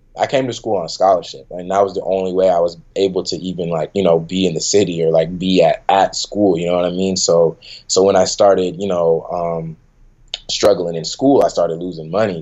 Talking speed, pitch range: 245 wpm, 85-100 Hz